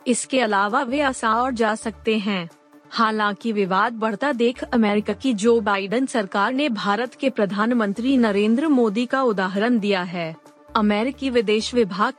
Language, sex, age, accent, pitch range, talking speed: Hindi, female, 30-49, native, 205-245 Hz, 150 wpm